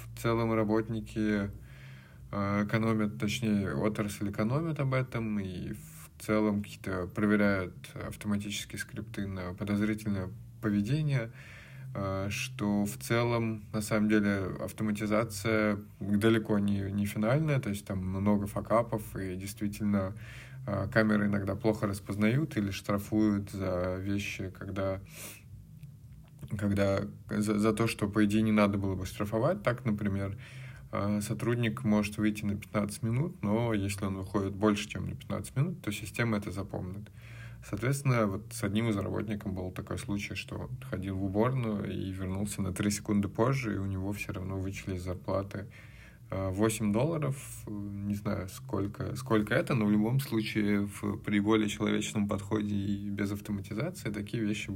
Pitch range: 100-115 Hz